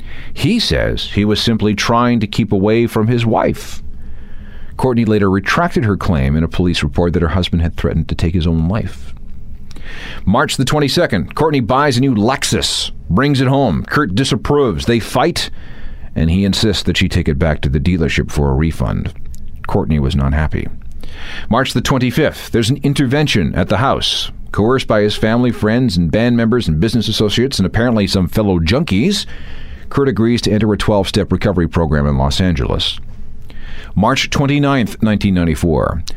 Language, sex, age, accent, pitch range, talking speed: English, male, 40-59, American, 85-125 Hz, 170 wpm